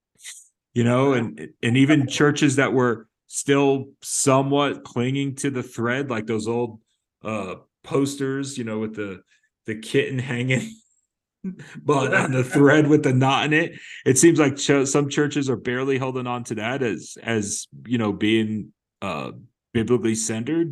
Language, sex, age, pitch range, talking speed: English, male, 30-49, 105-140 Hz, 160 wpm